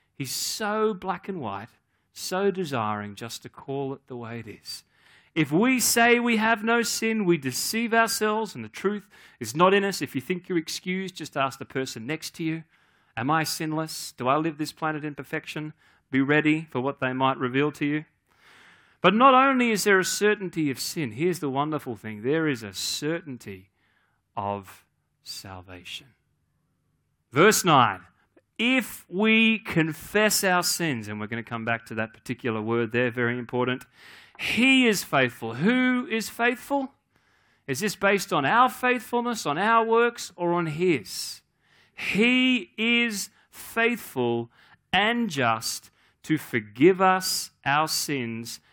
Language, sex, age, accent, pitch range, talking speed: English, male, 40-59, Australian, 125-210 Hz, 160 wpm